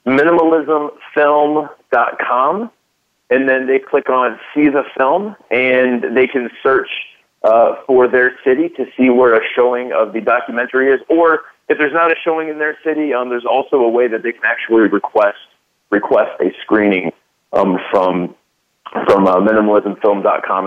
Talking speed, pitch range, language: 155 wpm, 110-150 Hz, English